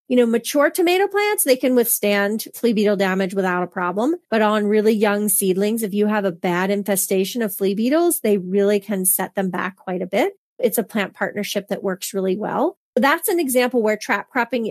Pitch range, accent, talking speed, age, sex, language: 205-255 Hz, American, 210 wpm, 30-49, female, English